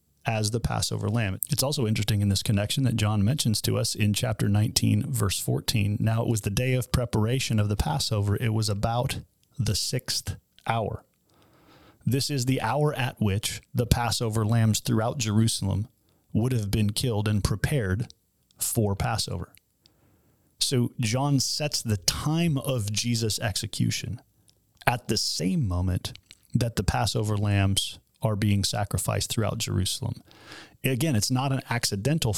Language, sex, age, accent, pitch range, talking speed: English, male, 30-49, American, 105-125 Hz, 150 wpm